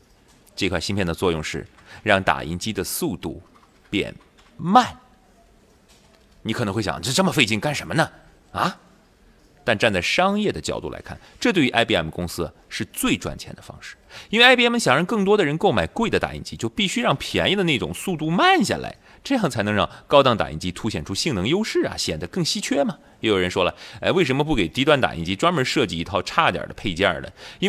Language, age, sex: Chinese, 30-49, male